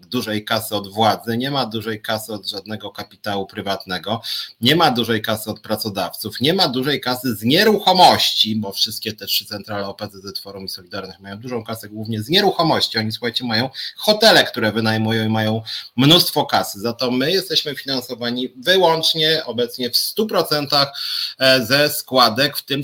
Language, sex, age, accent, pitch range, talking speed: Polish, male, 30-49, native, 105-125 Hz, 160 wpm